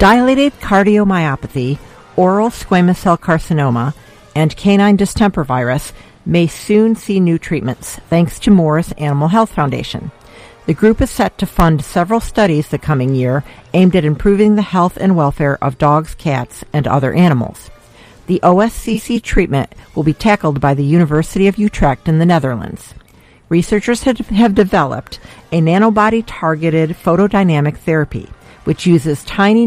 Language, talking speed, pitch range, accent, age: English, 140 wpm, 140-195 Hz, American, 50-69